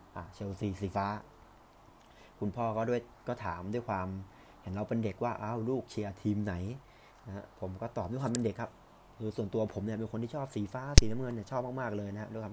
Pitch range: 95-115 Hz